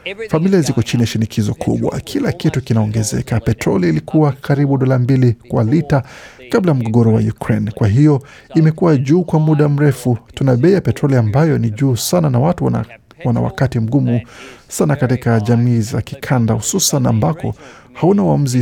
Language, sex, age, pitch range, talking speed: Swahili, male, 50-69, 115-145 Hz, 160 wpm